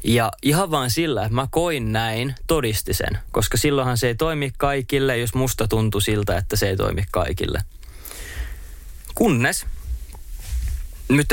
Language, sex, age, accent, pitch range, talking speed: Finnish, male, 20-39, native, 85-130 Hz, 145 wpm